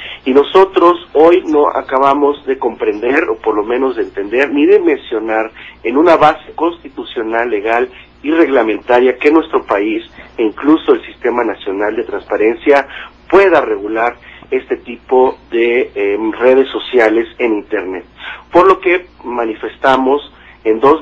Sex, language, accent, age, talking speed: male, Spanish, Mexican, 40-59, 140 wpm